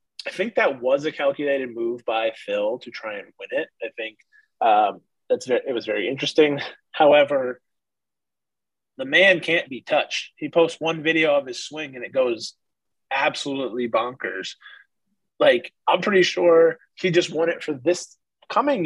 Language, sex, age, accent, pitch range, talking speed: English, male, 20-39, American, 135-220 Hz, 165 wpm